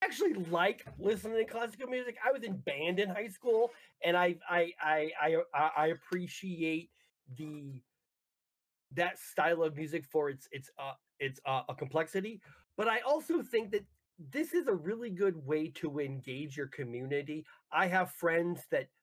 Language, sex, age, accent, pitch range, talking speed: English, male, 30-49, American, 155-225 Hz, 165 wpm